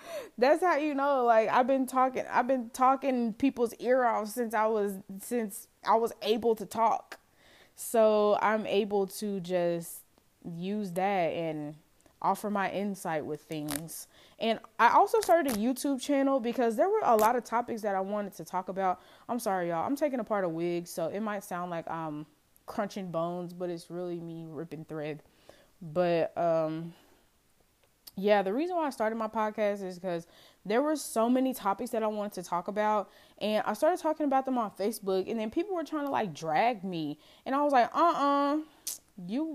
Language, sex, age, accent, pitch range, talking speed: English, female, 20-39, American, 185-245 Hz, 190 wpm